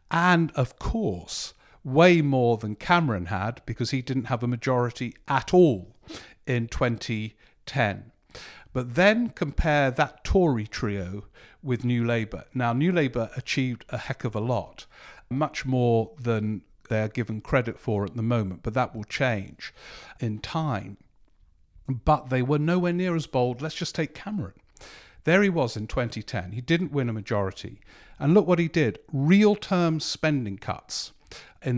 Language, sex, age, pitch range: English, male, 50-69, 110-145 Hz